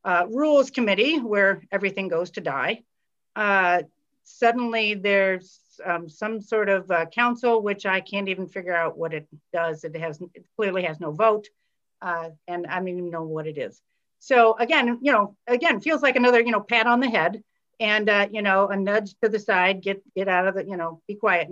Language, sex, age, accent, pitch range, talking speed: English, female, 50-69, American, 190-235 Hz, 205 wpm